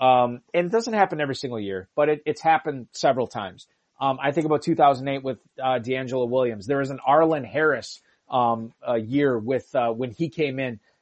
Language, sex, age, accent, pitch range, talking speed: English, male, 30-49, American, 130-155 Hz, 220 wpm